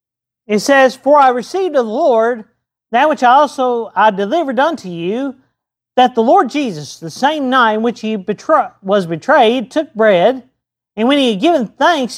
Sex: male